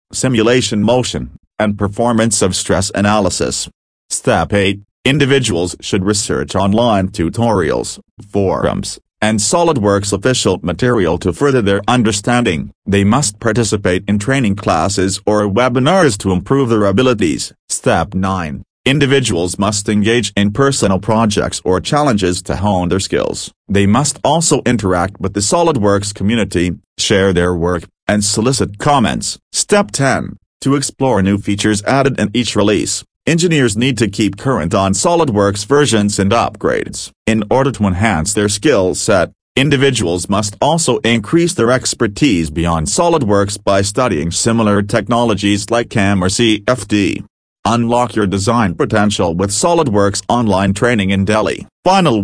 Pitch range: 100-125 Hz